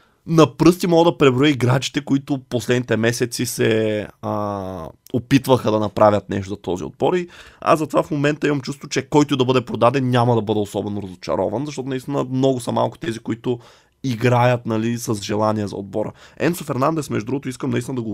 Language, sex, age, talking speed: Bulgarian, male, 20-39, 180 wpm